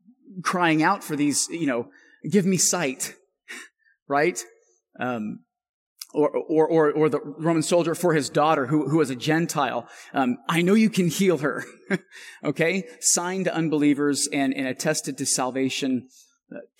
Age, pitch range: 30-49, 140-220 Hz